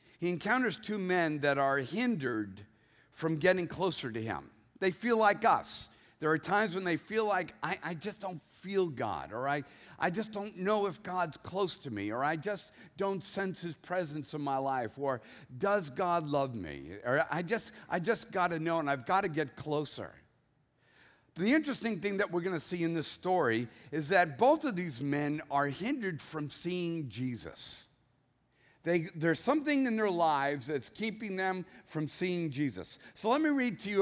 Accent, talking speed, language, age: American, 190 wpm, English, 50-69